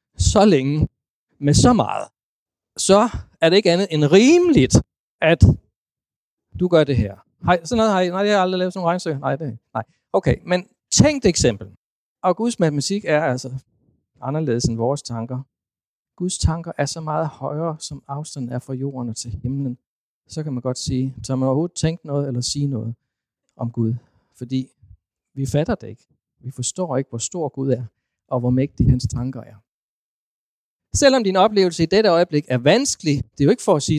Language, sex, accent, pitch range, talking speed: Danish, male, native, 125-185 Hz, 190 wpm